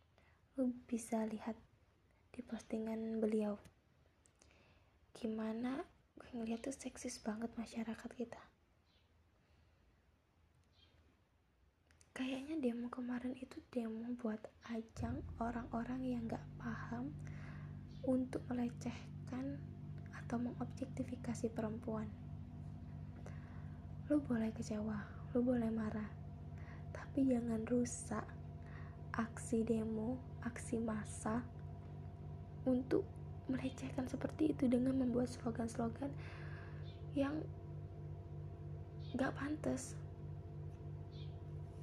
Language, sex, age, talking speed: Indonesian, female, 10-29, 75 wpm